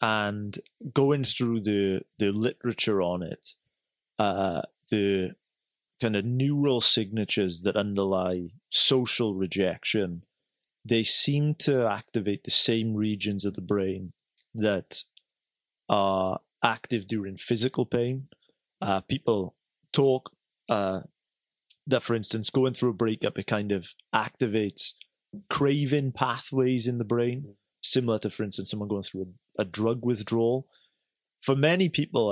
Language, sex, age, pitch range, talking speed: English, male, 30-49, 100-125 Hz, 125 wpm